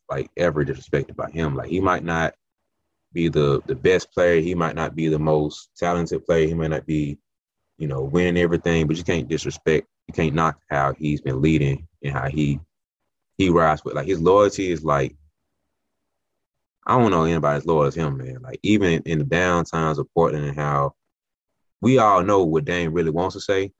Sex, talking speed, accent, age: male, 200 wpm, American, 20-39